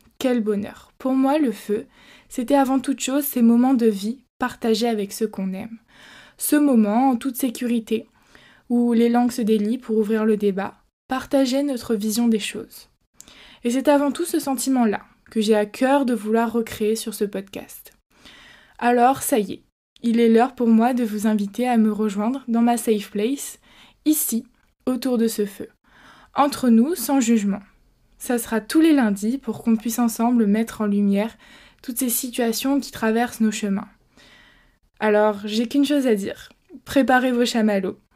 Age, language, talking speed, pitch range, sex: 20-39, French, 175 wpm, 215-250 Hz, female